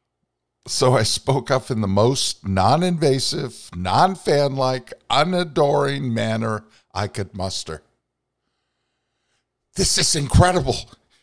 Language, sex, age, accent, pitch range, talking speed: English, male, 50-69, American, 90-125 Hz, 90 wpm